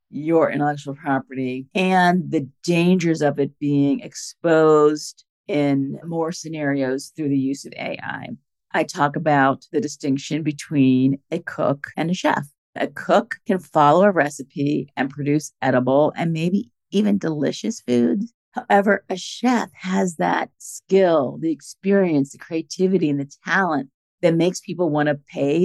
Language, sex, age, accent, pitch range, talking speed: English, female, 50-69, American, 140-185 Hz, 145 wpm